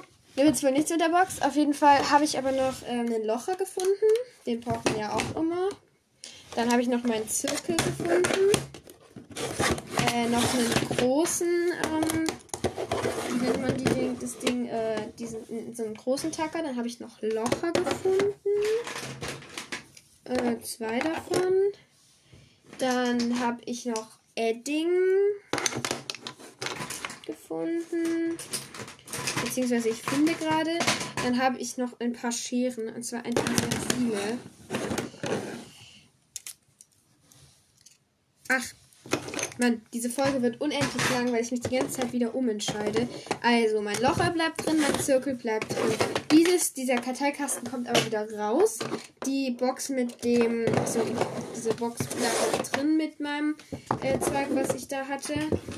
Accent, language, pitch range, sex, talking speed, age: German, German, 235-315 Hz, female, 135 wpm, 10-29